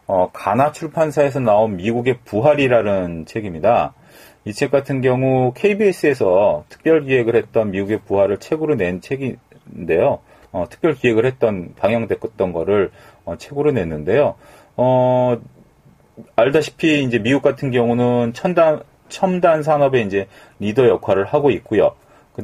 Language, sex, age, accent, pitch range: Korean, male, 40-59, native, 105-140 Hz